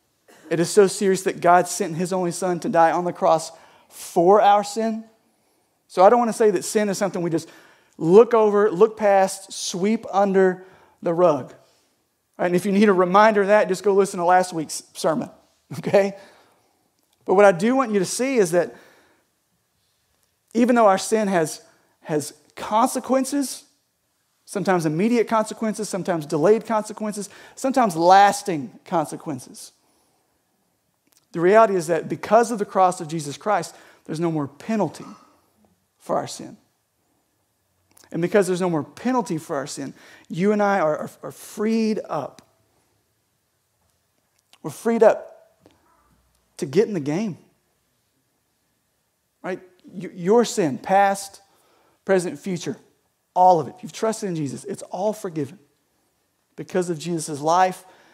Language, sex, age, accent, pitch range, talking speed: English, male, 40-59, American, 170-215 Hz, 150 wpm